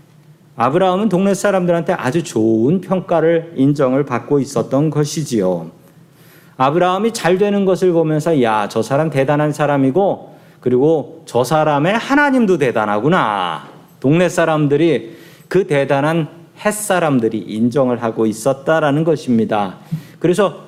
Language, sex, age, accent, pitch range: Korean, male, 40-59, native, 135-175 Hz